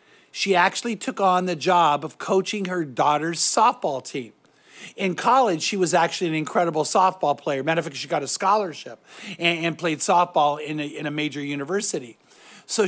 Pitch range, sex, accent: 155-200 Hz, male, American